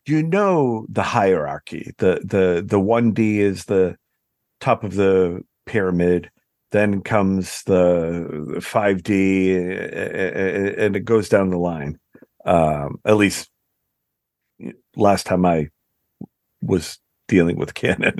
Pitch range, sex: 95-130 Hz, male